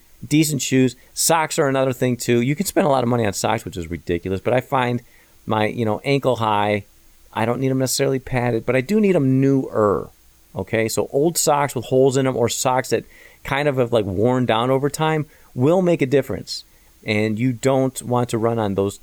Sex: male